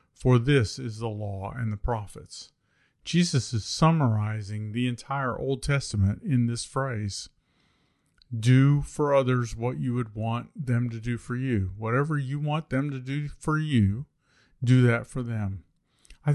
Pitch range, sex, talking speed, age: 115-145 Hz, male, 160 wpm, 40-59